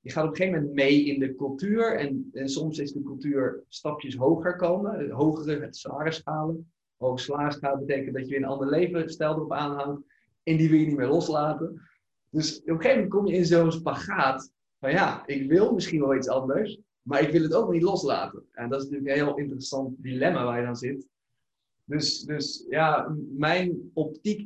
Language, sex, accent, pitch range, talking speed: Dutch, male, Dutch, 135-160 Hz, 200 wpm